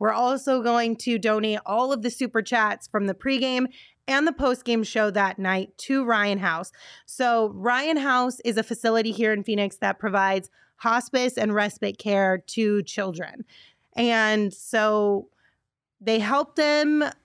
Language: English